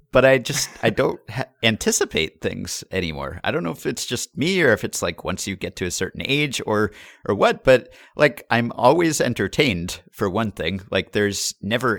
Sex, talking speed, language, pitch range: male, 200 wpm, English, 90-115 Hz